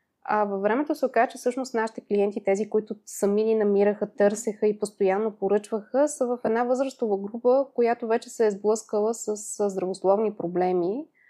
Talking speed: 165 wpm